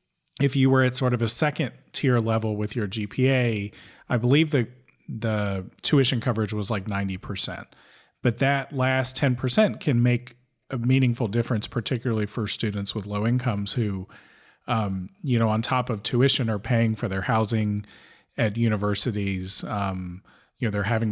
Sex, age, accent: male, 40-59, American